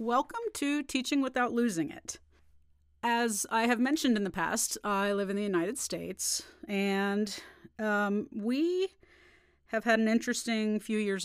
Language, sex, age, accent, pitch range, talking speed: English, female, 40-59, American, 190-235 Hz, 150 wpm